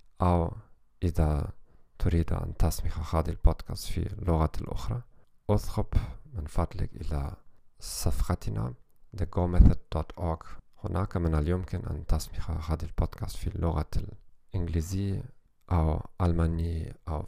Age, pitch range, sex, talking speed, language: 40-59, 80-100 Hz, male, 100 wpm, English